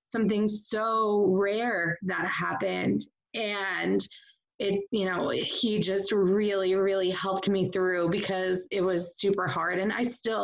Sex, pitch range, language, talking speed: female, 180-210 Hz, English, 140 wpm